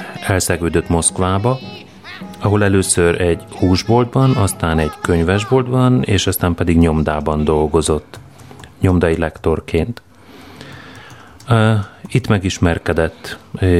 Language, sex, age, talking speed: Hungarian, male, 30-49, 80 wpm